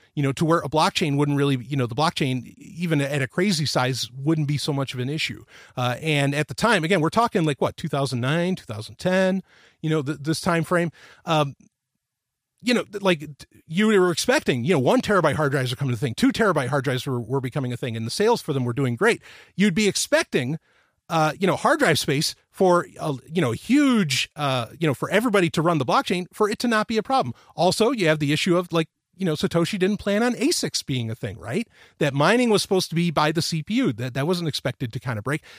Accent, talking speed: American, 240 wpm